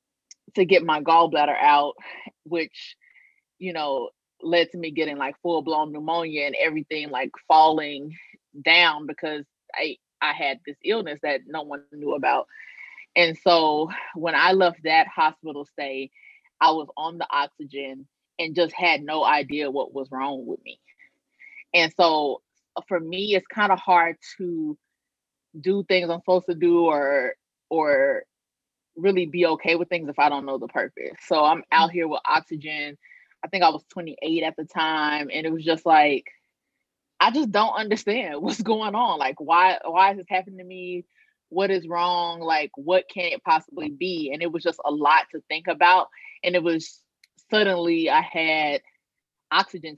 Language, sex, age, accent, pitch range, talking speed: English, female, 20-39, American, 150-185 Hz, 170 wpm